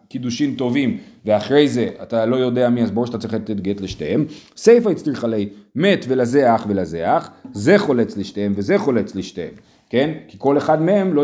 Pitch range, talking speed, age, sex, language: 130-185 Hz, 175 wpm, 40-59, male, Hebrew